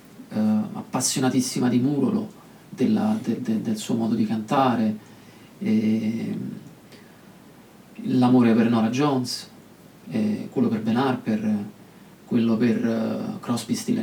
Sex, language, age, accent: male, Italian, 40-59, native